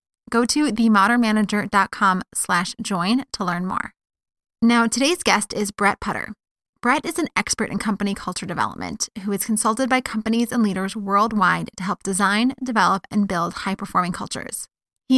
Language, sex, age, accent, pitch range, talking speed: English, female, 20-39, American, 195-235 Hz, 155 wpm